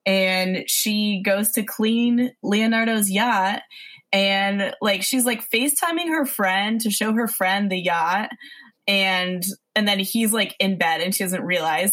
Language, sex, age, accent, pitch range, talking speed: English, female, 20-39, American, 185-235 Hz, 155 wpm